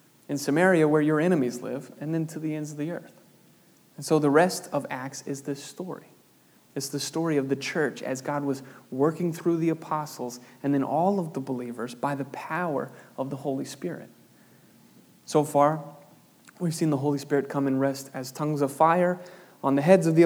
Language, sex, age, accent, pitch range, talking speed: English, male, 30-49, American, 140-170 Hz, 200 wpm